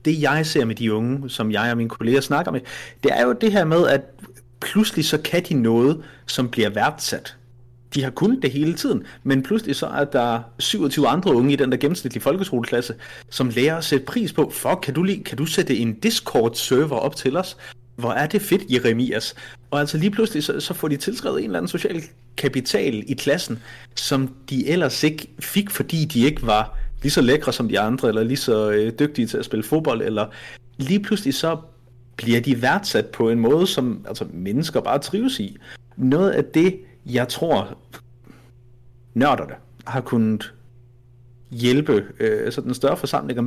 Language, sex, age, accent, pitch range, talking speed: Danish, male, 30-49, native, 120-155 Hz, 195 wpm